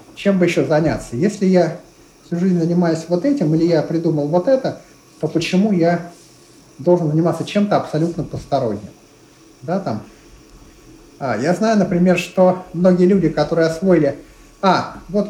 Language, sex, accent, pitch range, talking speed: Russian, male, native, 155-195 Hz, 145 wpm